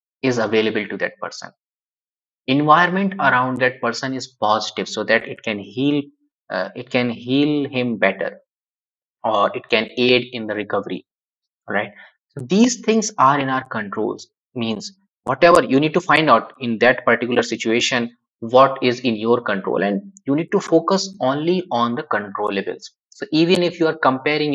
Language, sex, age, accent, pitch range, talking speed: English, male, 20-39, Indian, 115-155 Hz, 165 wpm